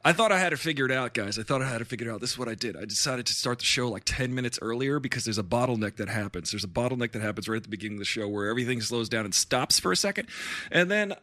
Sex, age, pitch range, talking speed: male, 20-39, 105-130 Hz, 325 wpm